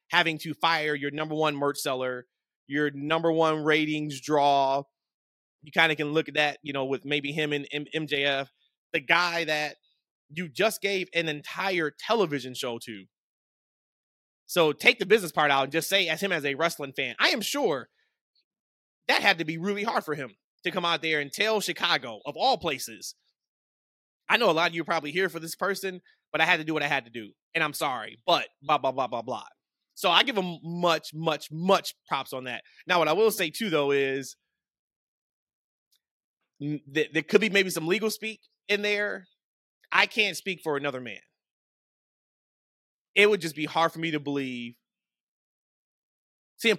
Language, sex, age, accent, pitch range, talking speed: English, male, 20-39, American, 145-185 Hz, 190 wpm